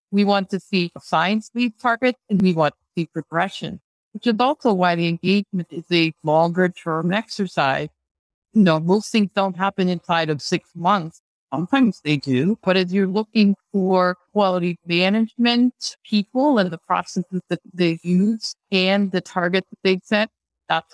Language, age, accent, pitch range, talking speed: English, 60-79, American, 160-205 Hz, 170 wpm